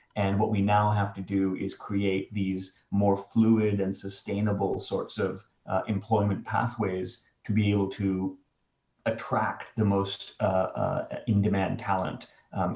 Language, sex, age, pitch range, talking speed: English, male, 30-49, 95-110 Hz, 145 wpm